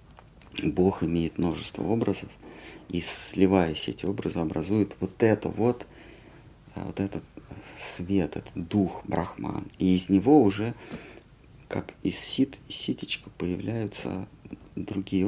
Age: 50-69